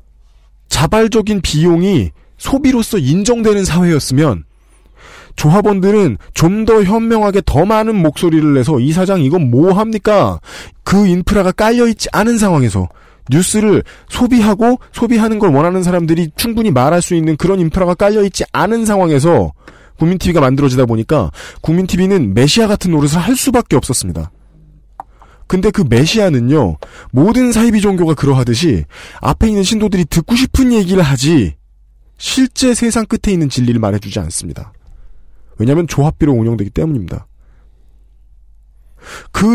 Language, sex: Korean, male